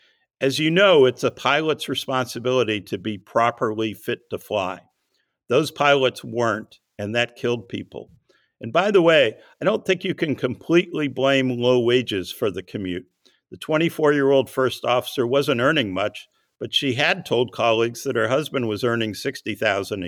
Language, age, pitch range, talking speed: English, 60-79, 105-140 Hz, 160 wpm